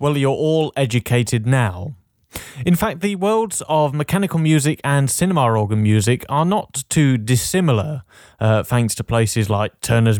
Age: 30-49